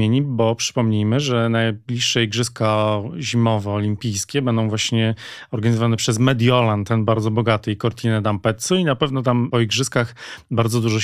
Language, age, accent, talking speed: Polish, 40-59, native, 140 wpm